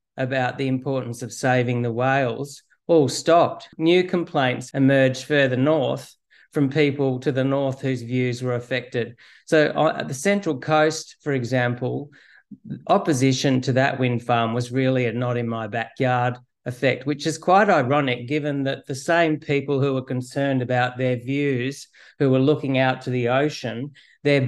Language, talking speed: English, 155 wpm